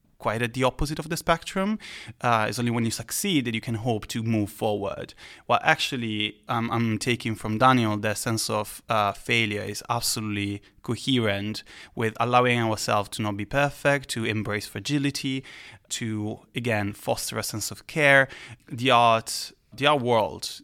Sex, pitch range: male, 105-125 Hz